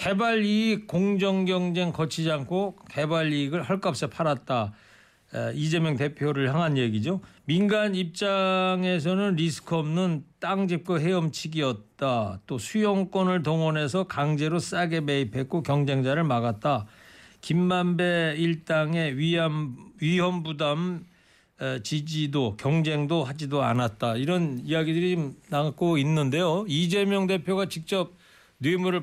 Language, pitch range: Korean, 135-180 Hz